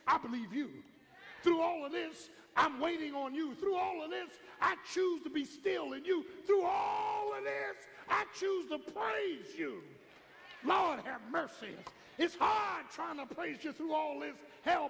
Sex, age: male, 50-69